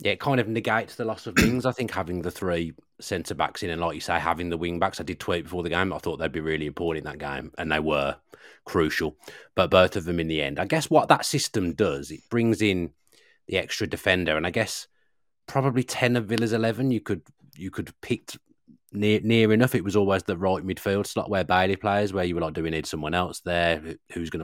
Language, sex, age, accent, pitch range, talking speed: English, male, 30-49, British, 85-105 Hz, 245 wpm